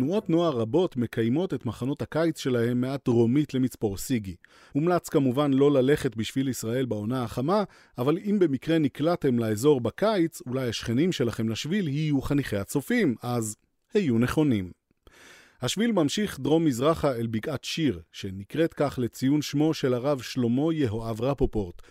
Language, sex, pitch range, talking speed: Hebrew, male, 115-155 Hz, 140 wpm